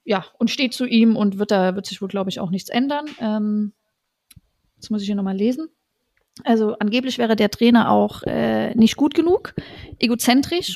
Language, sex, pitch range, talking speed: German, female, 210-255 Hz, 190 wpm